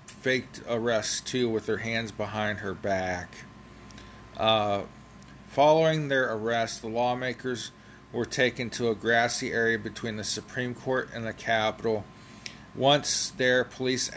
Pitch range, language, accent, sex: 115-140 Hz, English, American, male